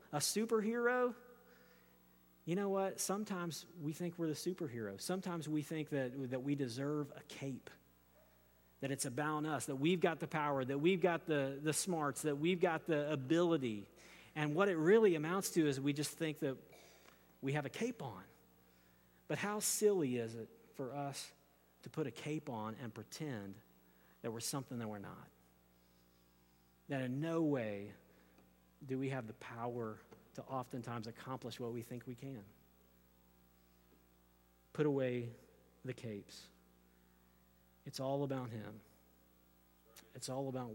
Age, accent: 40-59, American